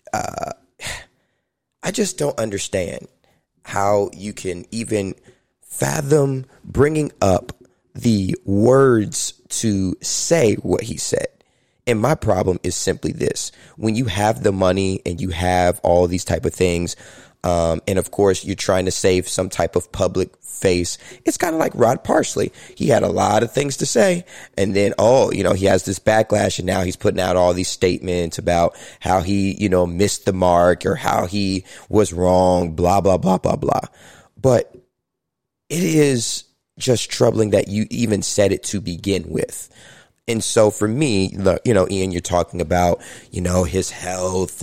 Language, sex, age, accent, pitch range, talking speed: English, male, 20-39, American, 90-110 Hz, 170 wpm